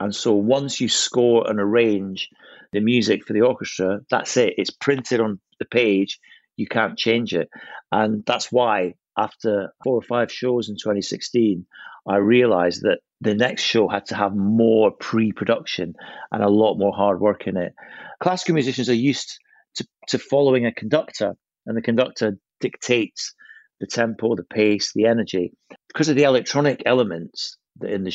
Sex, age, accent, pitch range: male, 40-59, British, 105-125 Hz